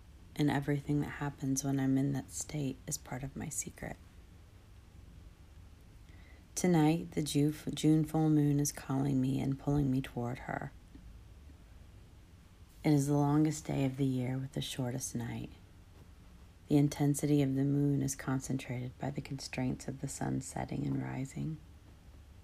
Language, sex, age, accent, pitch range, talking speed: English, female, 40-59, American, 85-140 Hz, 145 wpm